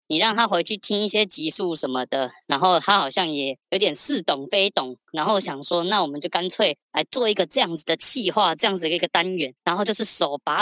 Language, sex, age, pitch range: Chinese, male, 20-39, 155-195 Hz